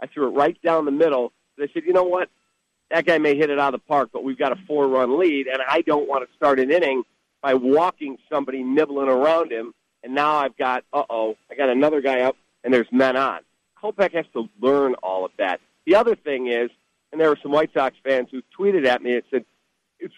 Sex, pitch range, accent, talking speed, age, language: male, 135-180 Hz, American, 240 wpm, 50-69, English